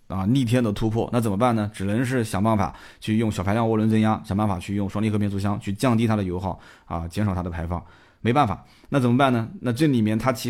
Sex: male